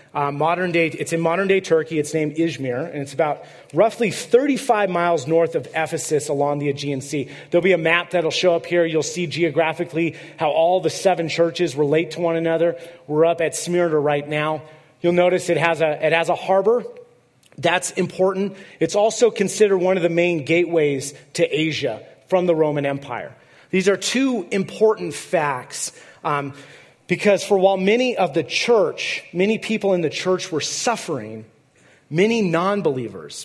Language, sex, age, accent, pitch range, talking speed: English, male, 30-49, American, 145-180 Hz, 175 wpm